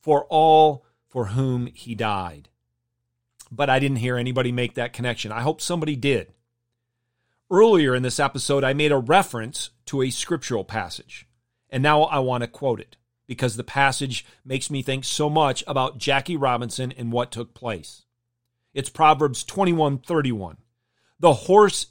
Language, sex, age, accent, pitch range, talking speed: English, male, 40-59, American, 120-155 Hz, 155 wpm